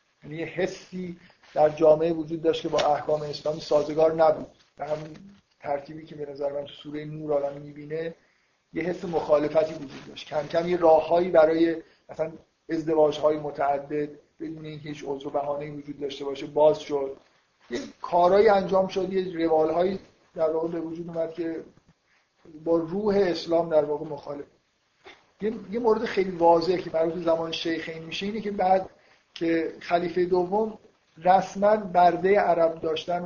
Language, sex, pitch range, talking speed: Persian, male, 150-175 Hz, 150 wpm